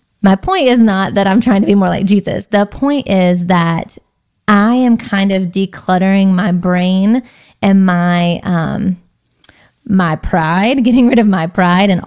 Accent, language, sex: American, English, female